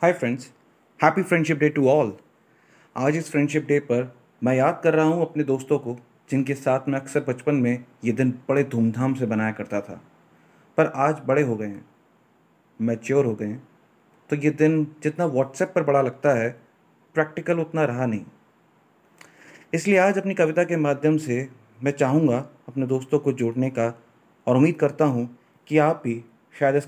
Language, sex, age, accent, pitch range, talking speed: Hindi, male, 30-49, native, 120-150 Hz, 180 wpm